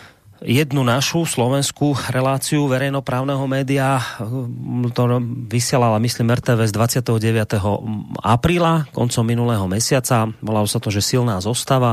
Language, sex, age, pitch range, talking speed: Slovak, male, 30-49, 100-125 Hz, 105 wpm